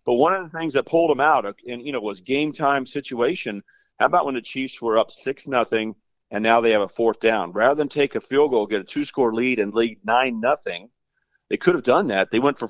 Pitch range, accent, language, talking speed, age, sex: 110-140 Hz, American, English, 265 wpm, 40-59, male